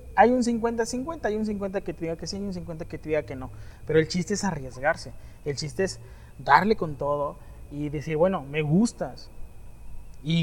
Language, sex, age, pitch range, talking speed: Spanish, male, 30-49, 130-180 Hz, 205 wpm